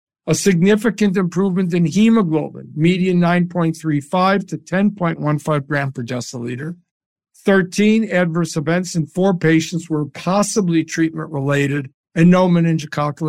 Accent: American